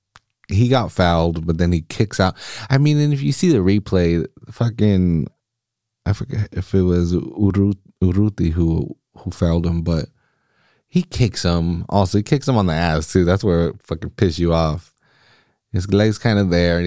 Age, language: 30-49, English